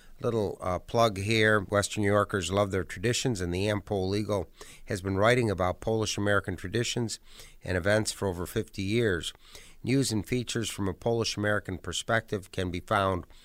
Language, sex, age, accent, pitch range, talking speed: English, male, 50-69, American, 95-110 Hz, 170 wpm